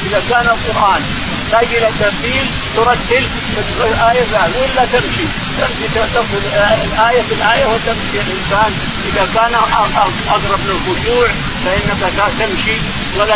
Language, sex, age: Arabic, male, 50-69